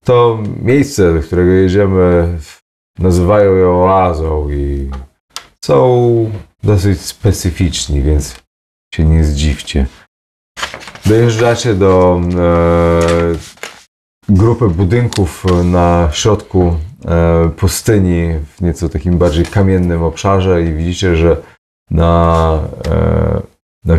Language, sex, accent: Polish, male, native